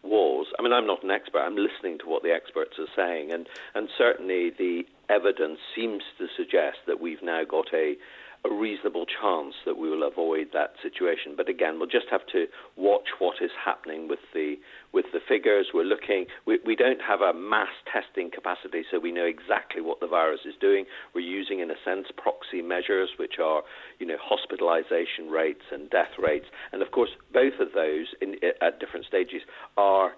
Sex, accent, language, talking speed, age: male, British, English, 195 wpm, 50-69